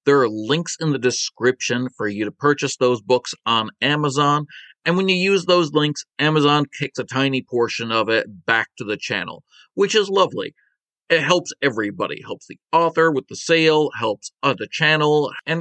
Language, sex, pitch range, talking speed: English, male, 125-165 Hz, 185 wpm